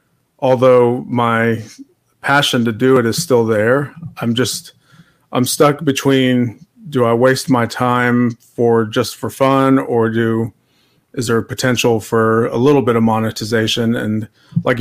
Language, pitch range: English, 115-135 Hz